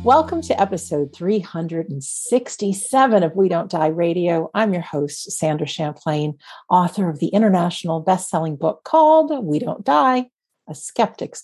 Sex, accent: female, American